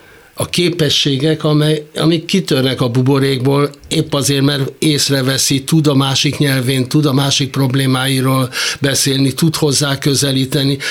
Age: 60-79